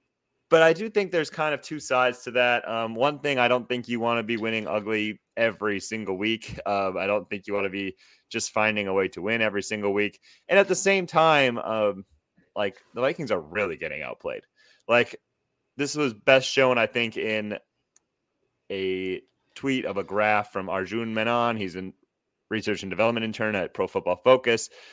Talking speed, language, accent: 195 wpm, English, American